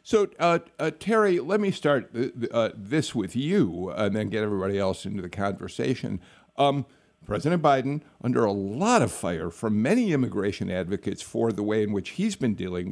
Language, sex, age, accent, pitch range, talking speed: English, male, 50-69, American, 105-145 Hz, 180 wpm